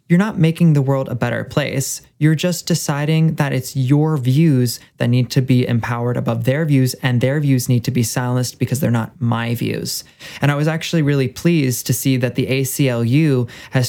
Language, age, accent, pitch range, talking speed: English, 20-39, American, 125-160 Hz, 205 wpm